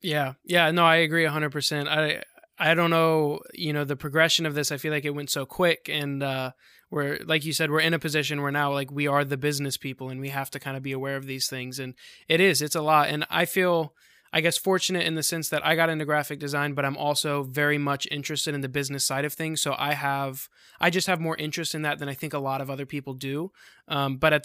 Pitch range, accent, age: 140-160 Hz, American, 20-39